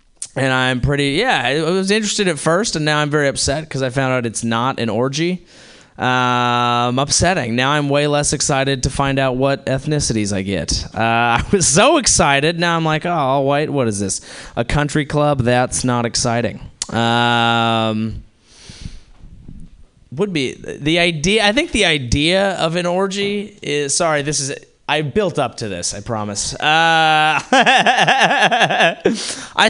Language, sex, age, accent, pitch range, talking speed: English, male, 20-39, American, 125-180 Hz, 165 wpm